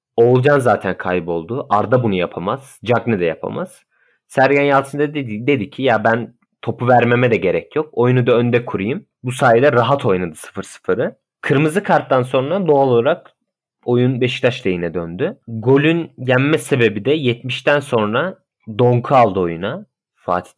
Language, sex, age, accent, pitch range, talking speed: Turkish, male, 30-49, native, 110-135 Hz, 145 wpm